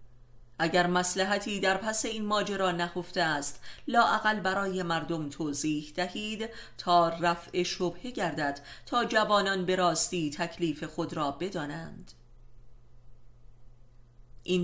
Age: 30-49